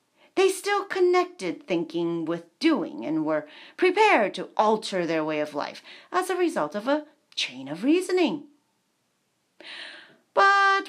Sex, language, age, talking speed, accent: female, English, 40-59, 130 wpm, American